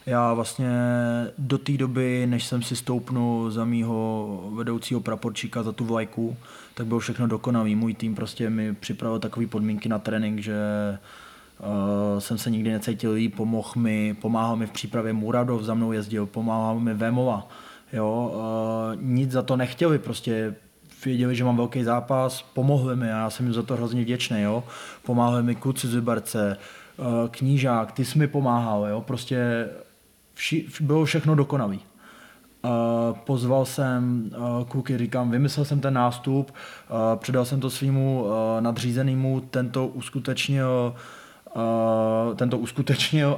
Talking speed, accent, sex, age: 145 wpm, native, male, 20-39